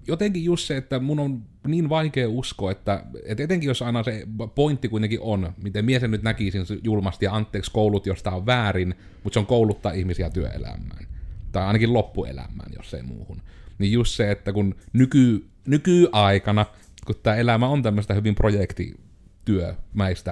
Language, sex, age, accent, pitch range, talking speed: Finnish, male, 30-49, native, 95-110 Hz, 170 wpm